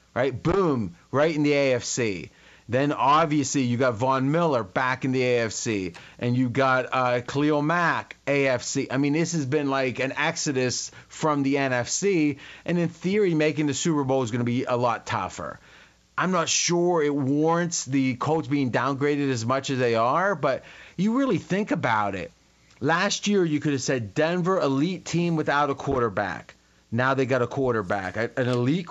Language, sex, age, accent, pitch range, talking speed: English, male, 30-49, American, 130-165 Hz, 180 wpm